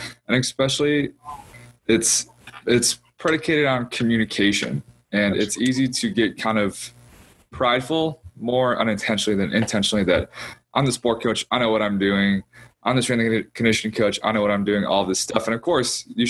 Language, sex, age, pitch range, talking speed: English, male, 20-39, 100-120 Hz, 175 wpm